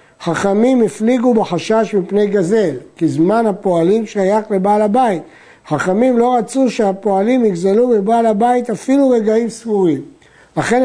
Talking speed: 120 wpm